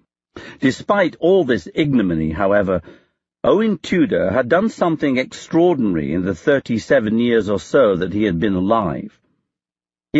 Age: 60-79